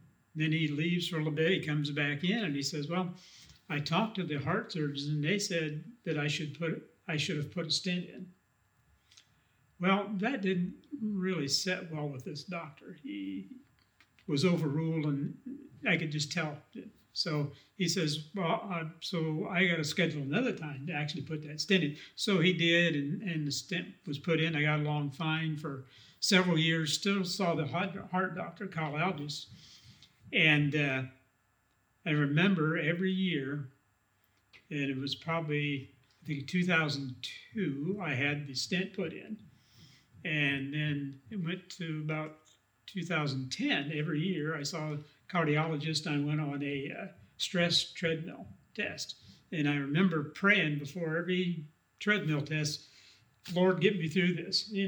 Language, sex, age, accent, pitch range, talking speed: English, male, 60-79, American, 145-180 Hz, 160 wpm